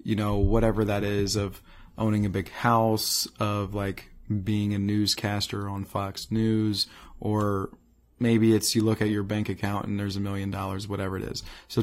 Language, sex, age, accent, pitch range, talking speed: English, male, 20-39, American, 100-115 Hz, 185 wpm